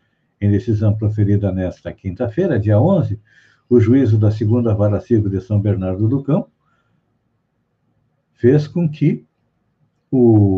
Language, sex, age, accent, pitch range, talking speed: Portuguese, male, 60-79, Brazilian, 105-140 Hz, 125 wpm